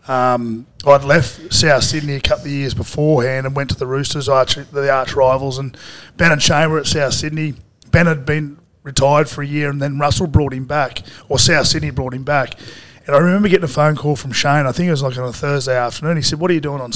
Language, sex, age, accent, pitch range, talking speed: English, male, 30-49, Australian, 130-155 Hz, 250 wpm